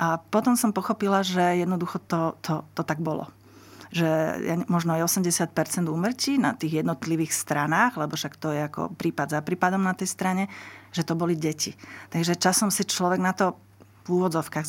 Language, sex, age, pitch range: Slovak, female, 40-59, 160-185 Hz